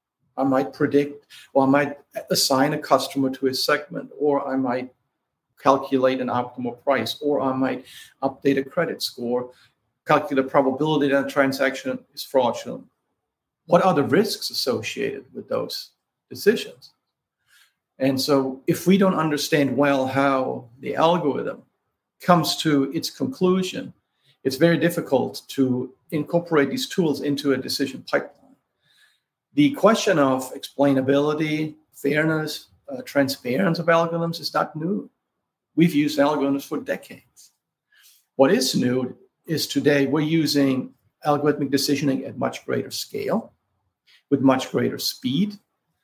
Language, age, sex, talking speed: English, 50-69, male, 130 wpm